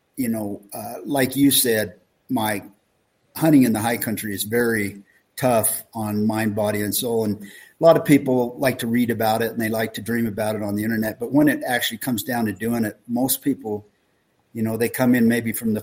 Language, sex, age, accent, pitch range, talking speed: English, male, 50-69, American, 105-125 Hz, 225 wpm